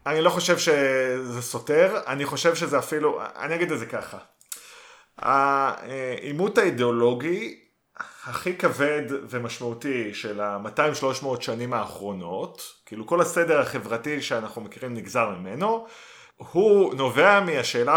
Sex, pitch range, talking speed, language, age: male, 120-155 Hz, 115 wpm, Hebrew, 30-49